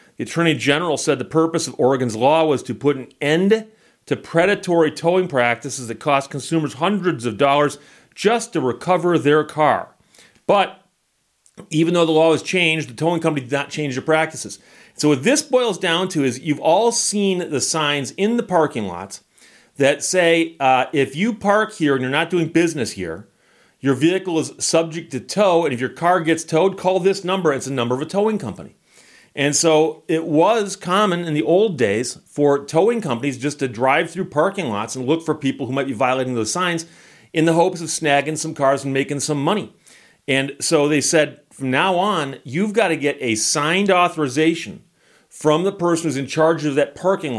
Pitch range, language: 135-175 Hz, English